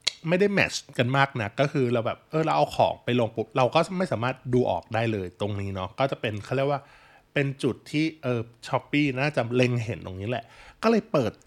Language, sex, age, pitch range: Thai, male, 20-39, 110-145 Hz